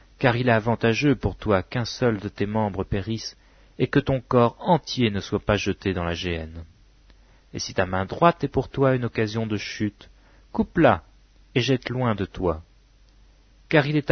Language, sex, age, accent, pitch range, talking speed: English, male, 40-59, French, 100-130 Hz, 190 wpm